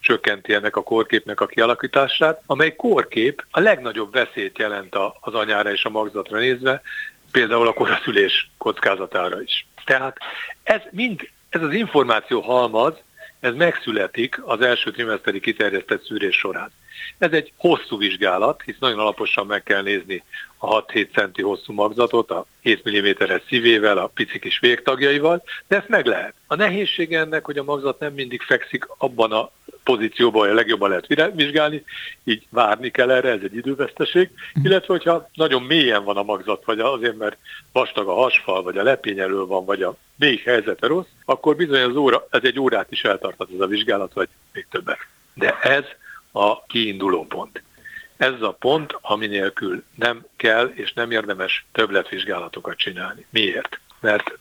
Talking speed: 160 wpm